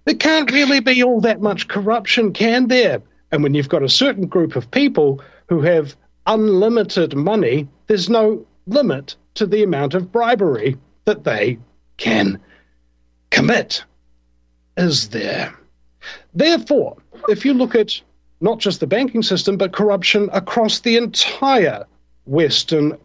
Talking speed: 140 wpm